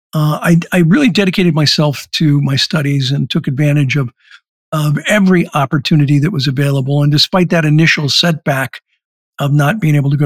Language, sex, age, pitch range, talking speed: English, male, 50-69, 140-170 Hz, 175 wpm